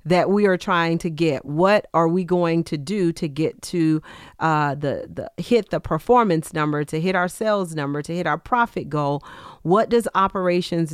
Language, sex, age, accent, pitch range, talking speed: English, female, 40-59, American, 160-200 Hz, 190 wpm